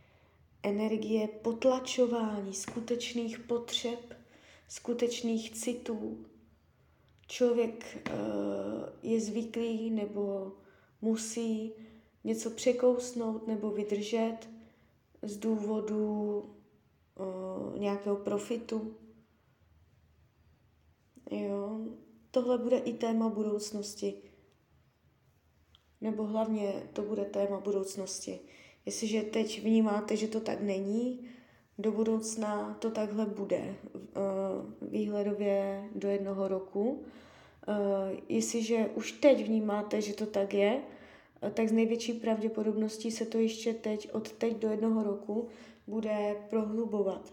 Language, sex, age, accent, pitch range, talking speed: Czech, female, 20-39, native, 200-225 Hz, 90 wpm